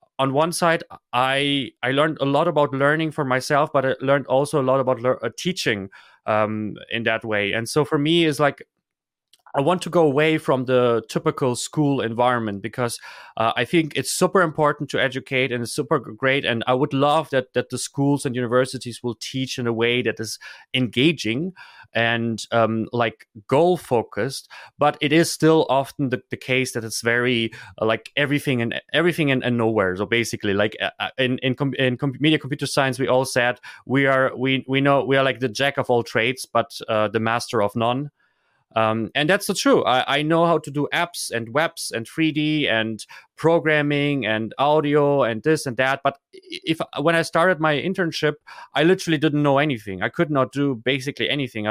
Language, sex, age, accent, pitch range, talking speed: English, male, 30-49, German, 120-150 Hz, 195 wpm